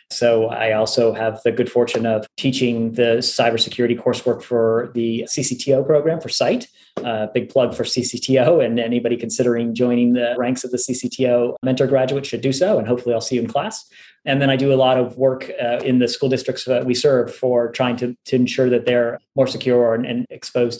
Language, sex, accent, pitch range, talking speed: English, male, American, 120-135 Hz, 210 wpm